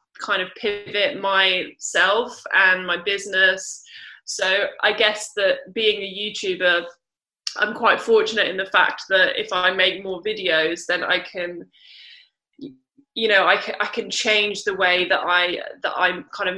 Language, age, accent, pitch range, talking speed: English, 20-39, British, 180-220 Hz, 155 wpm